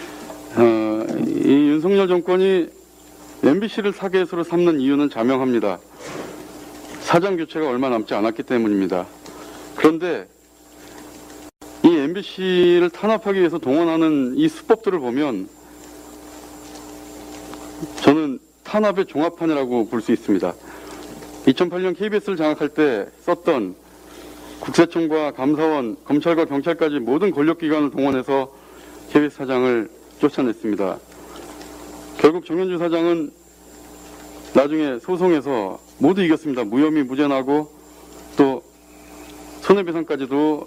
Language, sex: English, male